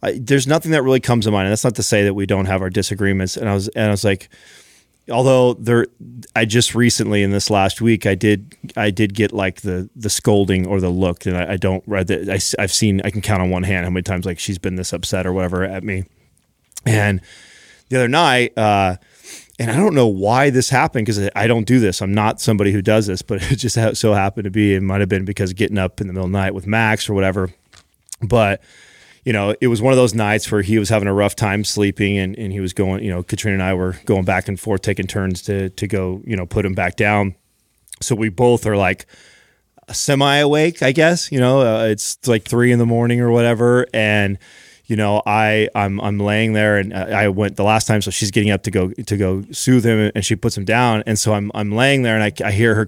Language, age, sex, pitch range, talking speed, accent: English, 30-49, male, 95-115 Hz, 250 wpm, American